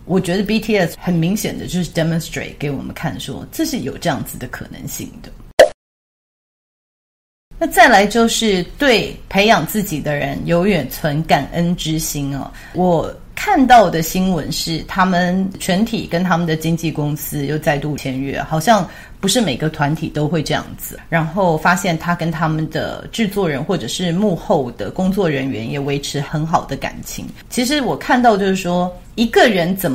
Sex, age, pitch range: female, 30-49, 150-195 Hz